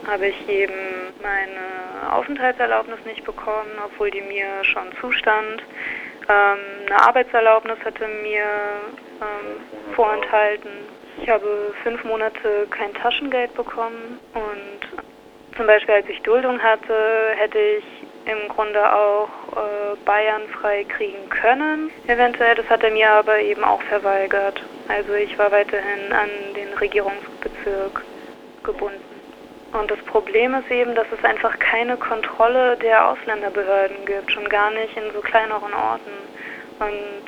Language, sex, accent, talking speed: German, female, German, 130 wpm